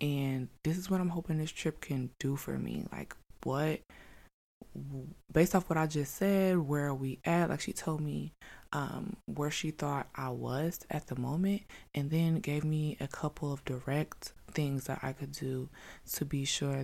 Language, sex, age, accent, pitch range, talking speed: English, female, 20-39, American, 135-160 Hz, 190 wpm